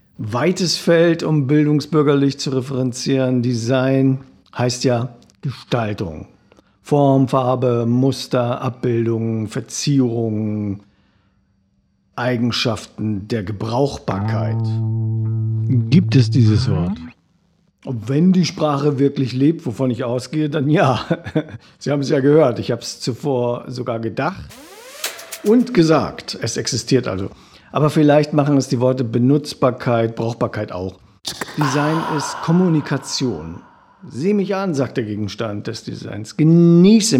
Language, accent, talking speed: German, German, 115 wpm